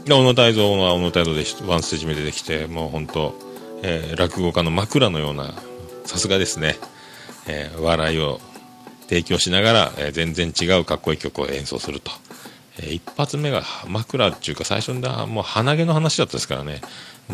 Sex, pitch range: male, 80-130 Hz